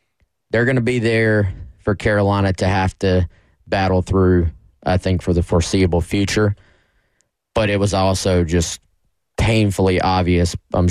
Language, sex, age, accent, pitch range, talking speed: English, male, 20-39, American, 90-105 Hz, 145 wpm